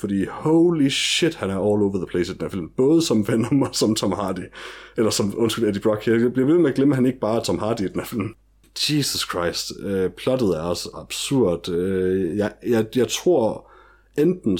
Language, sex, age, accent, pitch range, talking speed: Danish, male, 30-49, native, 95-120 Hz, 200 wpm